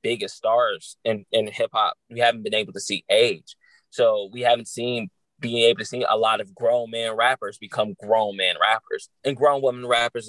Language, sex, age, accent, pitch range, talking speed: English, male, 20-39, American, 115-145 Hz, 200 wpm